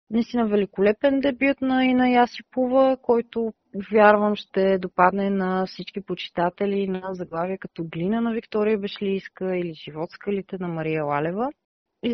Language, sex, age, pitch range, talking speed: Bulgarian, female, 30-49, 185-235 Hz, 130 wpm